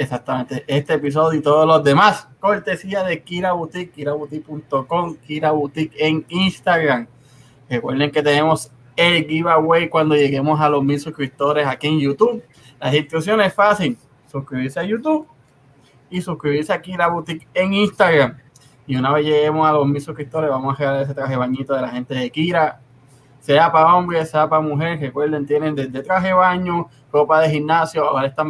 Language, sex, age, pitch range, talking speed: Spanish, male, 20-39, 135-160 Hz, 170 wpm